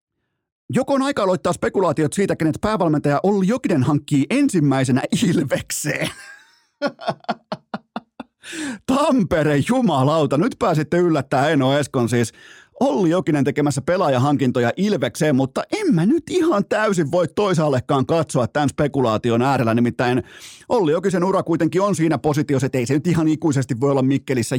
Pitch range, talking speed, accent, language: 130-180 Hz, 135 wpm, native, Finnish